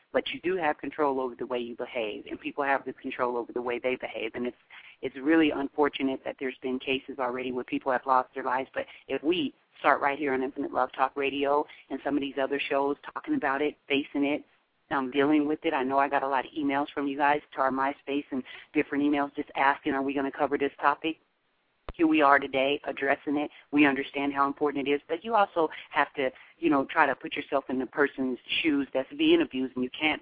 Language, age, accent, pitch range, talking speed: English, 40-59, American, 130-160 Hz, 240 wpm